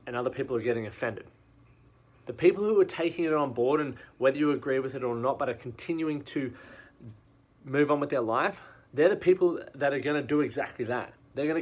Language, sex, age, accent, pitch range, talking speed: English, male, 30-49, Australian, 120-150 Hz, 215 wpm